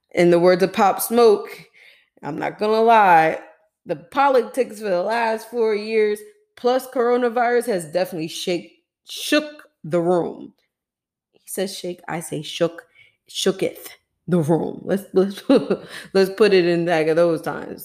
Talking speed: 150 wpm